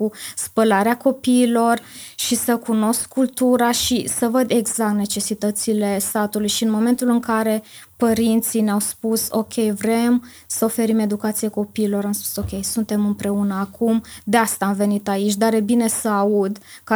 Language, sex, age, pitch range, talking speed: Romanian, female, 20-39, 210-230 Hz, 155 wpm